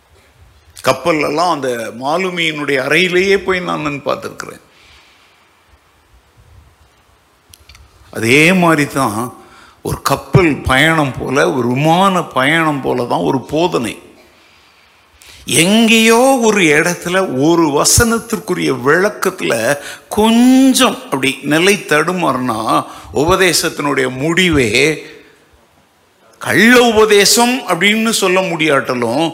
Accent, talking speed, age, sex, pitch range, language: Indian, 80 wpm, 50-69, male, 140-200 Hz, English